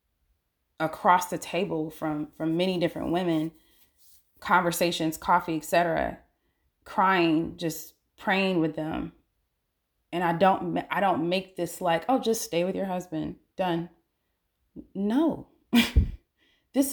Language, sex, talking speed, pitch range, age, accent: English, female, 115 wpm, 150-185 Hz, 20-39, American